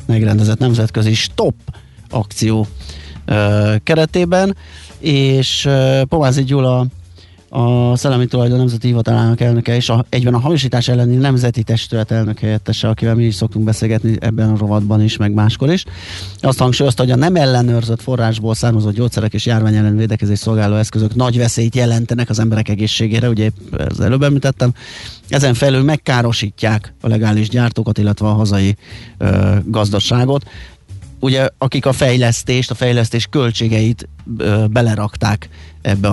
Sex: male